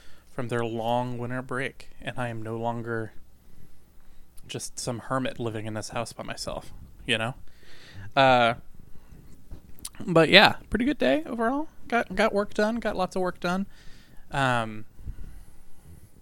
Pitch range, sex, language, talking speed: 110-140 Hz, male, English, 140 wpm